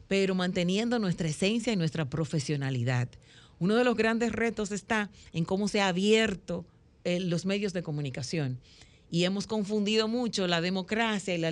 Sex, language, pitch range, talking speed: female, Spanish, 160-205 Hz, 160 wpm